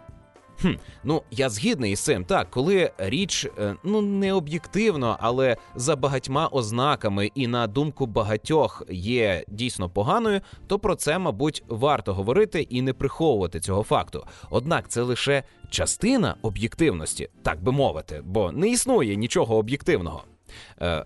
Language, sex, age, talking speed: Russian, male, 30-49, 135 wpm